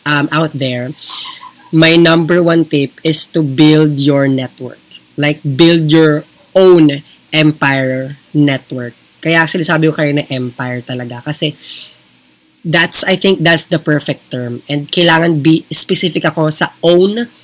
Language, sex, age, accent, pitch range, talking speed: Filipino, female, 20-39, native, 135-160 Hz, 140 wpm